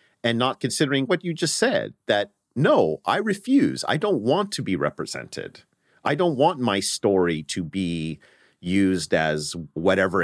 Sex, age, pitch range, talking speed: male, 40-59, 80-125 Hz, 160 wpm